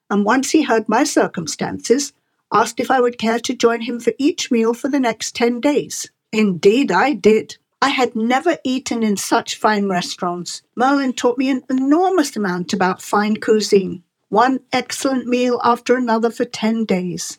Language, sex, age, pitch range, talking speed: English, female, 50-69, 210-265 Hz, 175 wpm